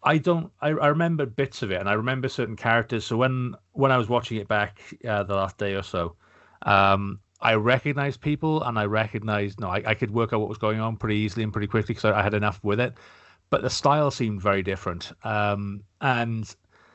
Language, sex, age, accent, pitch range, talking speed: English, male, 30-49, British, 95-115 Hz, 225 wpm